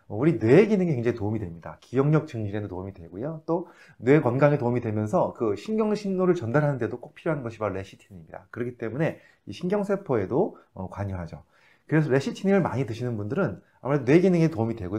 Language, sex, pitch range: Korean, male, 105-155 Hz